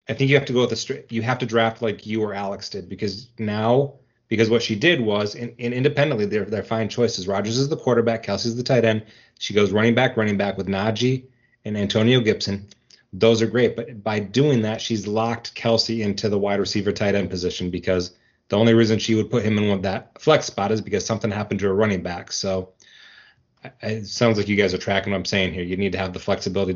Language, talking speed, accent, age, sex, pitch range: English, 240 wpm, American, 30-49, male, 100-120 Hz